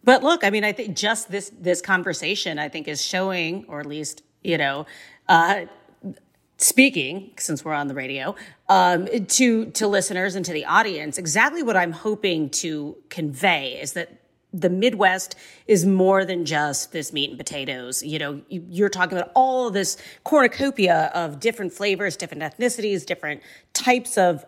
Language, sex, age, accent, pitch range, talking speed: English, female, 40-59, American, 155-205 Hz, 165 wpm